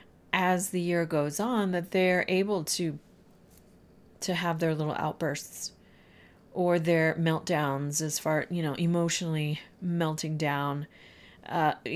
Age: 40-59